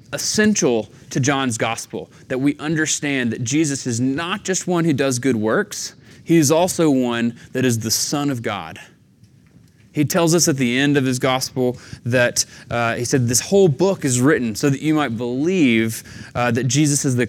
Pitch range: 115-155 Hz